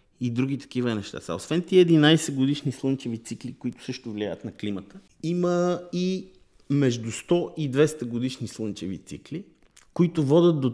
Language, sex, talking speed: Bulgarian, male, 150 wpm